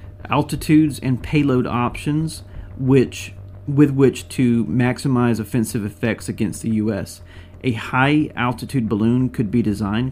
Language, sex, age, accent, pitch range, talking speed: English, male, 30-49, American, 100-120 Hz, 120 wpm